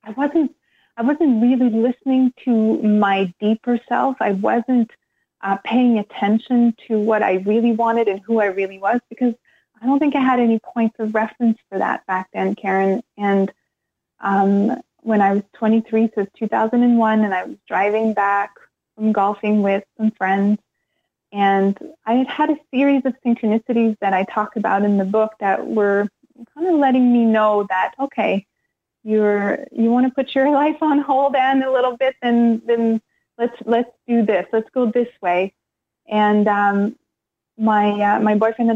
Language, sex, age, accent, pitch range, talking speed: English, female, 20-39, American, 200-235 Hz, 175 wpm